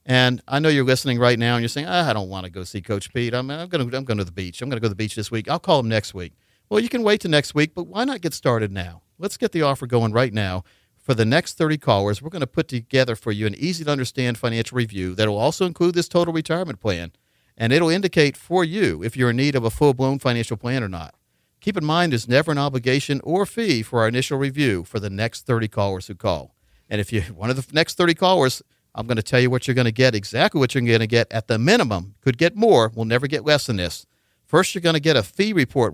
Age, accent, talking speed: 50-69, American, 280 wpm